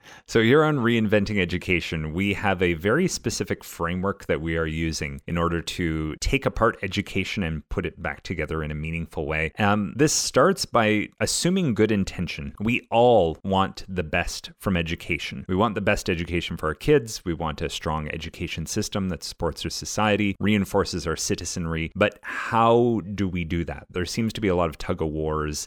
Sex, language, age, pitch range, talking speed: male, English, 30-49, 85-105 Hz, 185 wpm